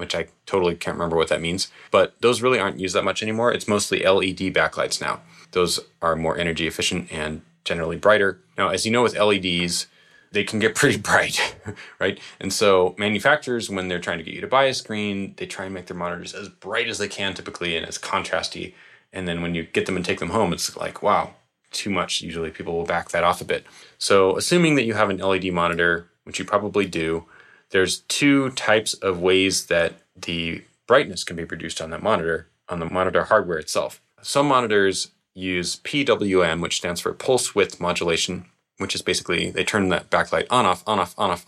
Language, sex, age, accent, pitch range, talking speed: English, male, 30-49, American, 85-105 Hz, 210 wpm